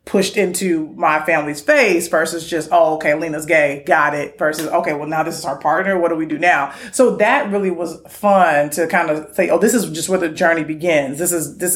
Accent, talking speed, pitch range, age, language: American, 235 wpm, 160-190 Hz, 30-49, English